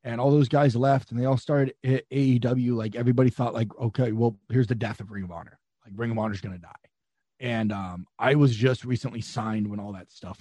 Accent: American